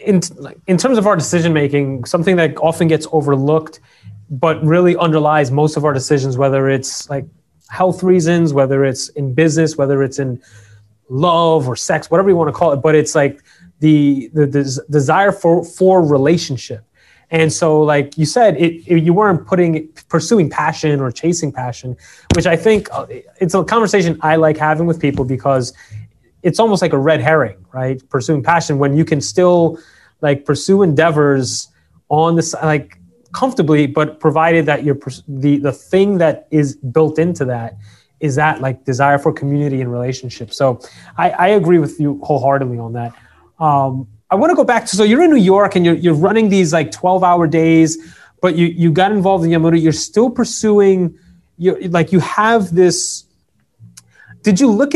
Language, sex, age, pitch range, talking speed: English, male, 30-49, 140-175 Hz, 180 wpm